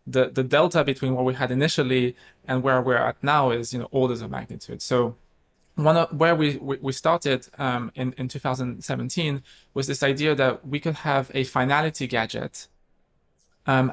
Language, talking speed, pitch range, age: English, 175 wpm, 125-150 Hz, 20-39